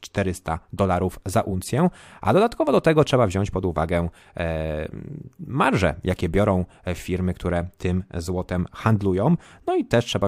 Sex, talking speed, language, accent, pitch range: male, 140 wpm, Polish, native, 85-120 Hz